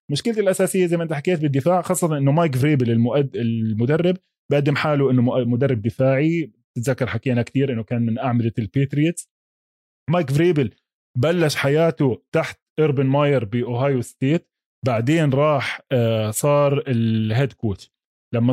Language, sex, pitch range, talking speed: Arabic, male, 135-185 Hz, 135 wpm